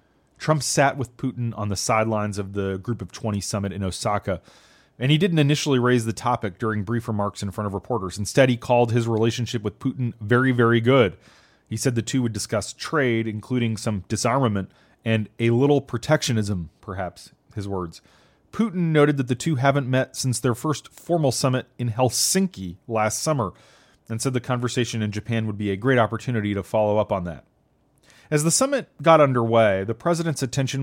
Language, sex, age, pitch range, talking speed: English, male, 30-49, 110-135 Hz, 185 wpm